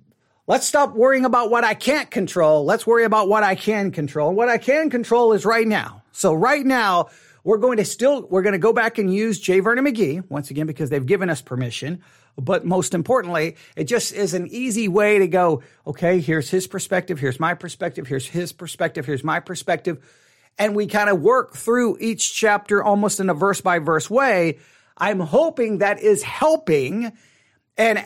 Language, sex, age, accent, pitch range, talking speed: English, male, 40-59, American, 175-235 Hz, 195 wpm